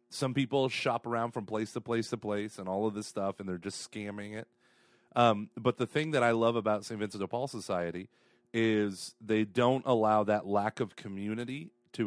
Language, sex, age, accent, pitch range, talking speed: English, male, 30-49, American, 105-125 Hz, 210 wpm